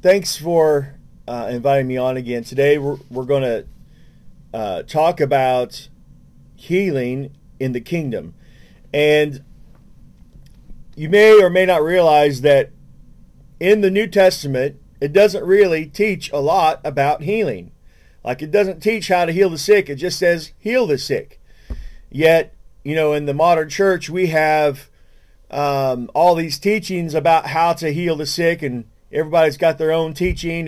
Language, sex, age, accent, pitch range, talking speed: English, male, 40-59, American, 140-185 Hz, 155 wpm